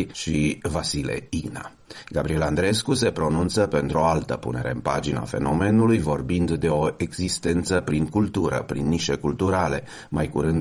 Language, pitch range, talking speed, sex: Romanian, 70-90 Hz, 140 wpm, male